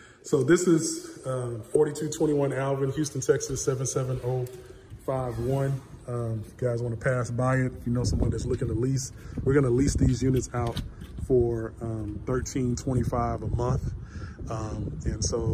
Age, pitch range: 20-39, 110-130 Hz